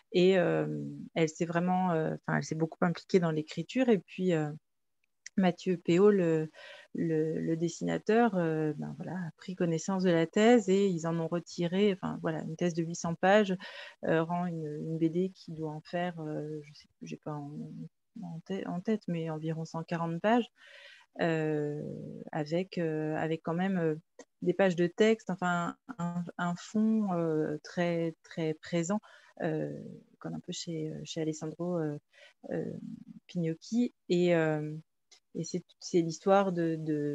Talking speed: 160 wpm